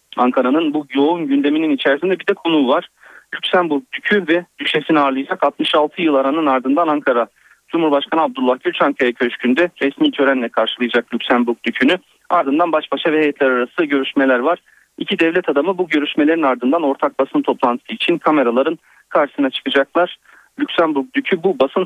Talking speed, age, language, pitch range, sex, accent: 145 wpm, 40-59, Turkish, 130-175 Hz, male, native